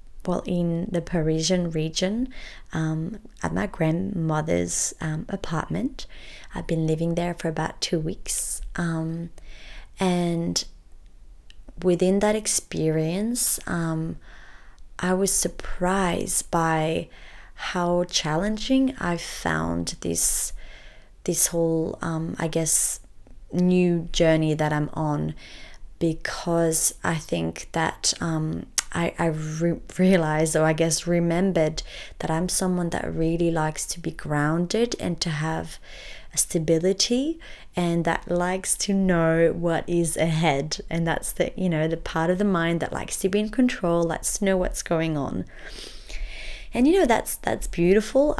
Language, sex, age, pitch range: English, female, 20-39, 160-185 Hz